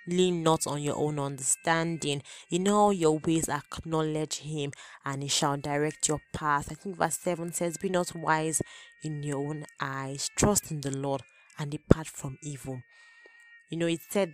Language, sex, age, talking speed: English, female, 20-39, 175 wpm